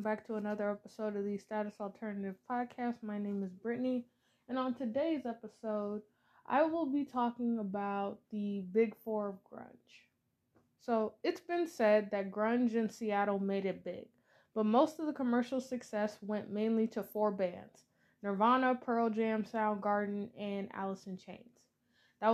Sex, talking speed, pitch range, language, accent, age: female, 155 wpm, 200-235 Hz, English, American, 20-39